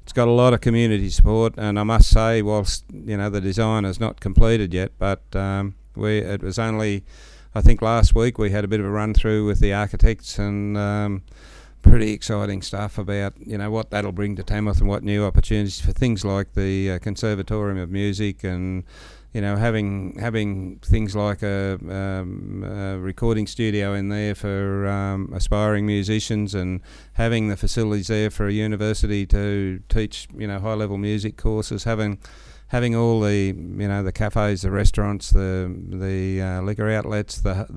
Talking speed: 185 wpm